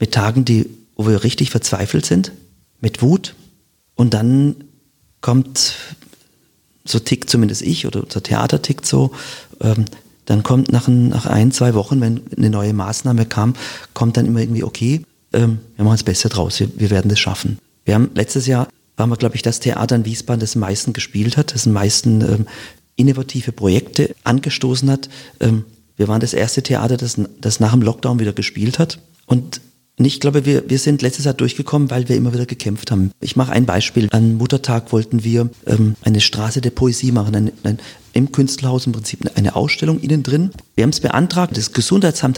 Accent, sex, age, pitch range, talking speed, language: German, male, 40-59, 110-135 Hz, 195 wpm, German